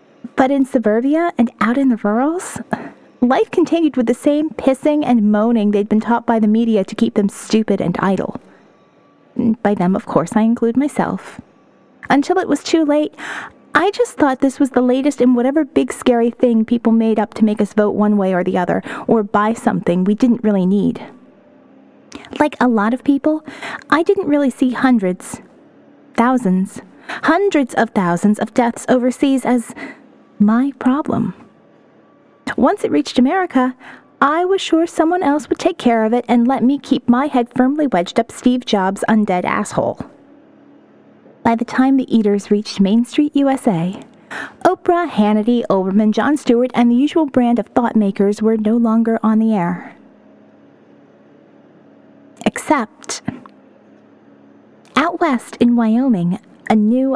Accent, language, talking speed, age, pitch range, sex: American, English, 160 wpm, 30-49, 210-275 Hz, female